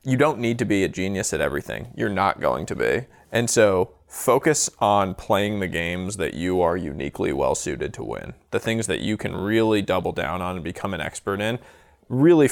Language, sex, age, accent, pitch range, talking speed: English, male, 20-39, American, 100-120 Hz, 205 wpm